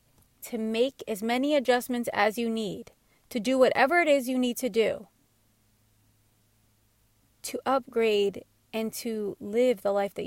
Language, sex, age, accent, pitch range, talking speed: English, female, 30-49, American, 180-245 Hz, 145 wpm